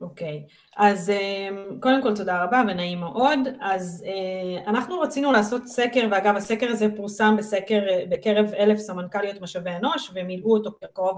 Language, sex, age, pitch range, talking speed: Hebrew, female, 30-49, 195-255 Hz, 145 wpm